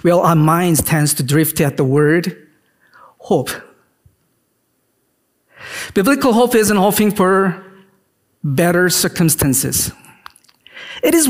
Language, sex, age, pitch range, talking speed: English, male, 50-69, 160-205 Hz, 100 wpm